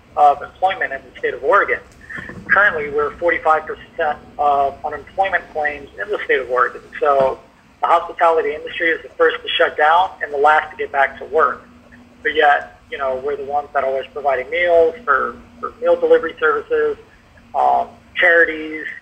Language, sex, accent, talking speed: English, male, American, 175 wpm